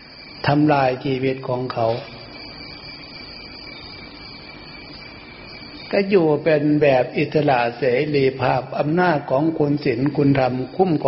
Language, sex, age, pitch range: Thai, male, 60-79, 130-155 Hz